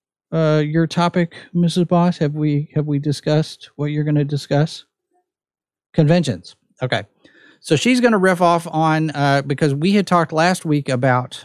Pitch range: 120-160 Hz